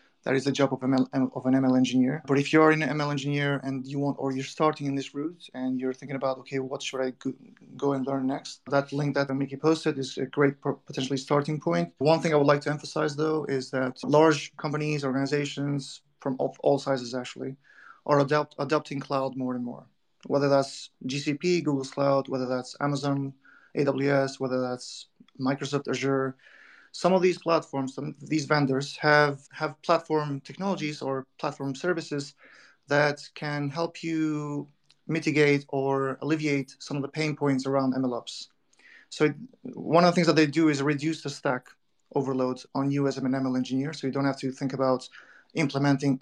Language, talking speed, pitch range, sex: English, 180 wpm, 135-150 Hz, male